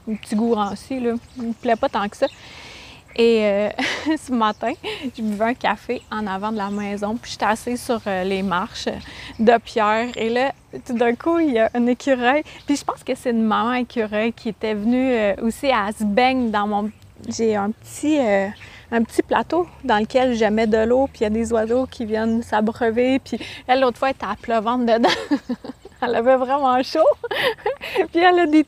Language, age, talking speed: French, 30-49, 215 wpm